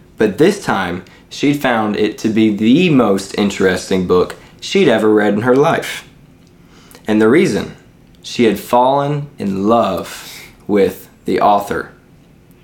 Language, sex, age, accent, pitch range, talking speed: English, male, 20-39, American, 95-110 Hz, 140 wpm